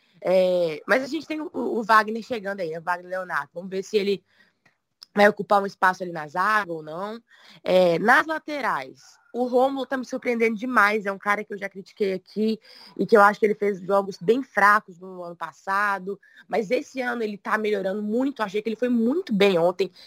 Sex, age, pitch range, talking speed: female, 20-39, 185-235 Hz, 205 wpm